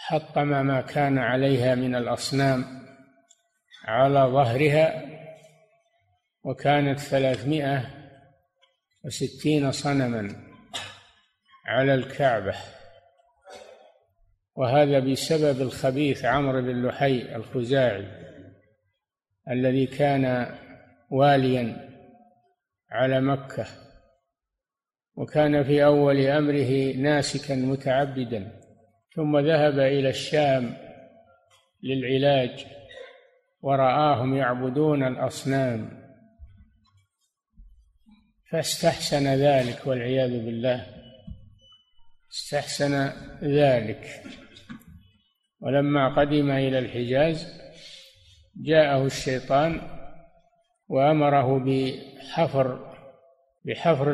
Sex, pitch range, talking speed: male, 130-145 Hz, 60 wpm